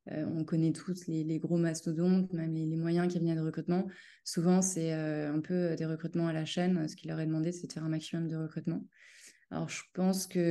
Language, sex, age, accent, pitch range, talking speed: French, female, 20-39, French, 160-180 Hz, 240 wpm